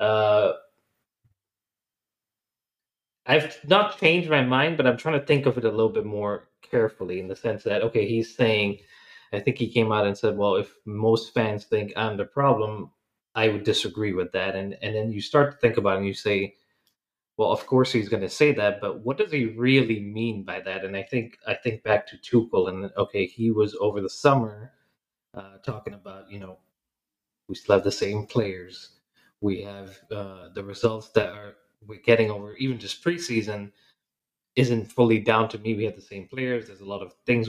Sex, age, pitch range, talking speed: male, 20-39, 100-120 Hz, 205 wpm